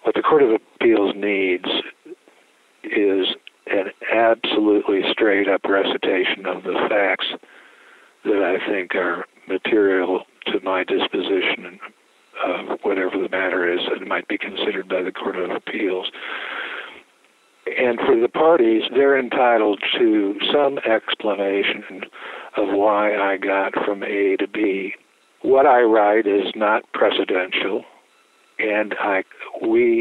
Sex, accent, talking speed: male, American, 125 wpm